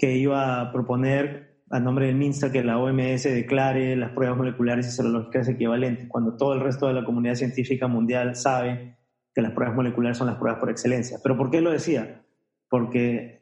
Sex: male